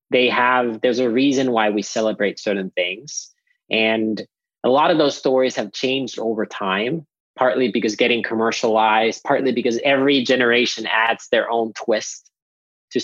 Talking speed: 150 wpm